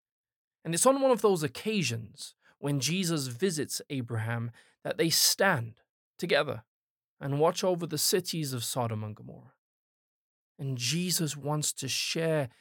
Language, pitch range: English, 130-180 Hz